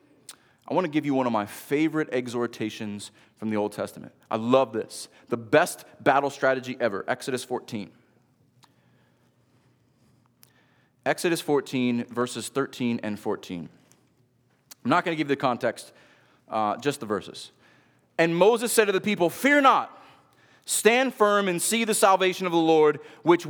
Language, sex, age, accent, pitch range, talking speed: English, male, 30-49, American, 125-180 Hz, 155 wpm